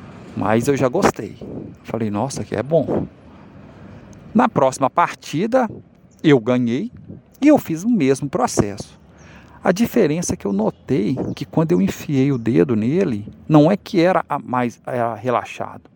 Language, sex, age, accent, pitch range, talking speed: Portuguese, male, 40-59, Brazilian, 125-170 Hz, 150 wpm